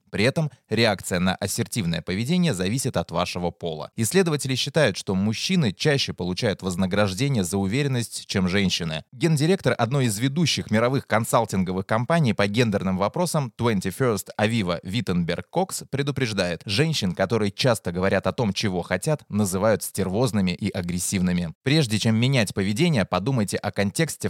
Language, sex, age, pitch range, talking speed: Russian, male, 20-39, 95-135 Hz, 140 wpm